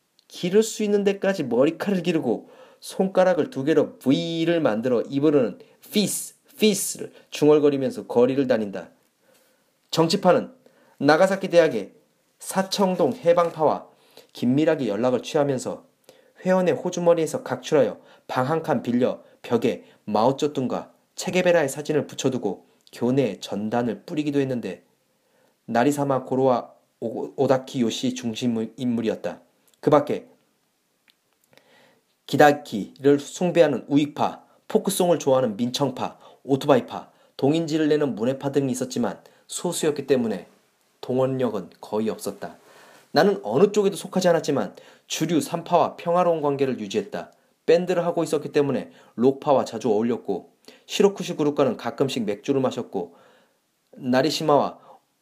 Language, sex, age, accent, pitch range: Korean, male, 30-49, native, 135-180 Hz